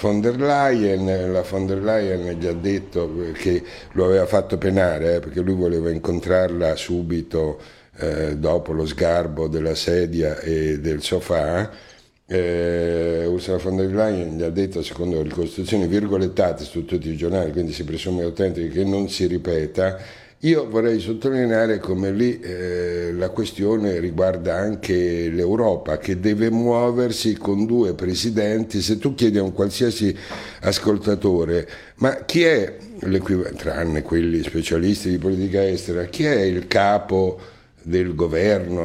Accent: native